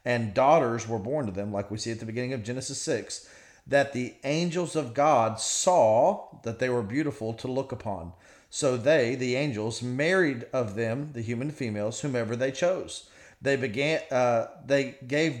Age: 40-59